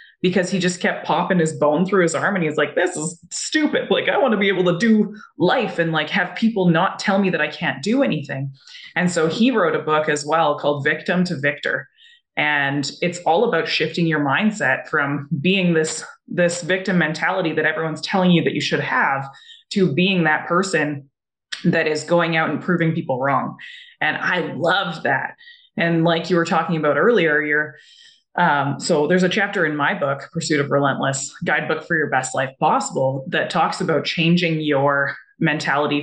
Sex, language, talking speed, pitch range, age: female, English, 195 wpm, 150-185 Hz, 20-39